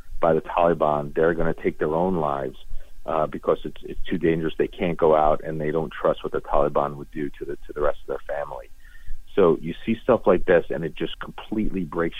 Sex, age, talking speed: male, 40-59, 230 wpm